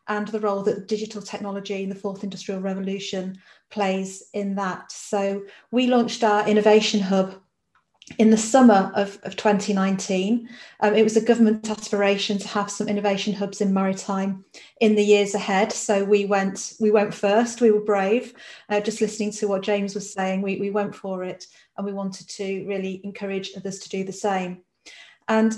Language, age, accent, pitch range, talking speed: English, 40-59, British, 195-220 Hz, 180 wpm